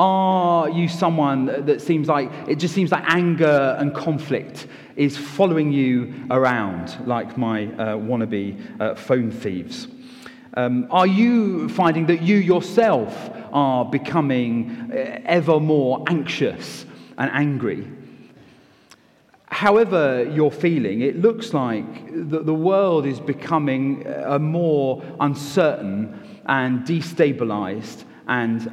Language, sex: English, male